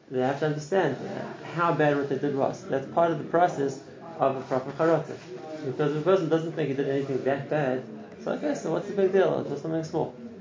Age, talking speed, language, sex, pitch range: 30-49, 225 wpm, English, male, 135-165 Hz